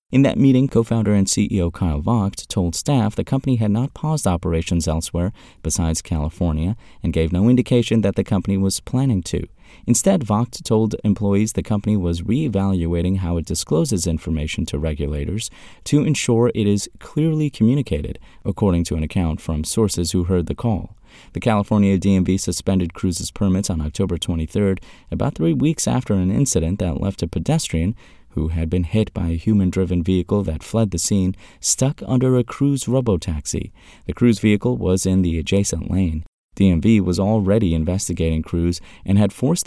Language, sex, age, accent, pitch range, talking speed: English, male, 30-49, American, 85-115 Hz, 170 wpm